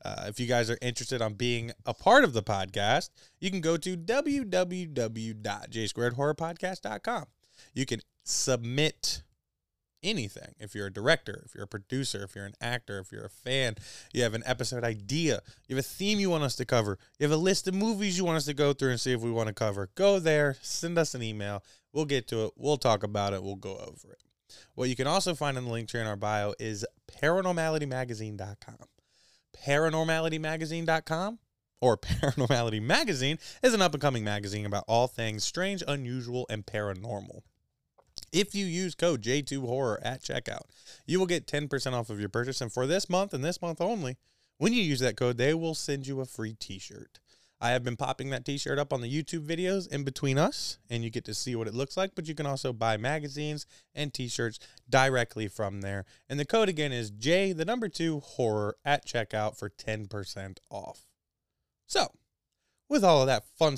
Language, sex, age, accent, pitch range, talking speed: English, male, 20-39, American, 115-160 Hz, 195 wpm